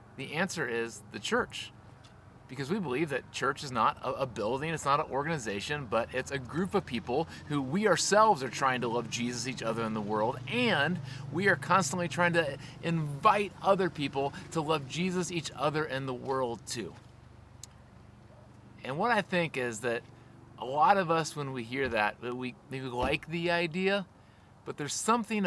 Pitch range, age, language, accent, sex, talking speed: 125-160 Hz, 30-49, English, American, male, 180 wpm